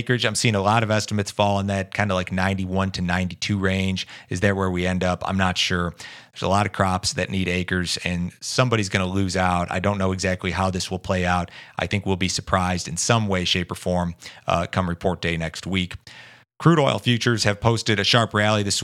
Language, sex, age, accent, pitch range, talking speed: English, male, 30-49, American, 95-105 Hz, 235 wpm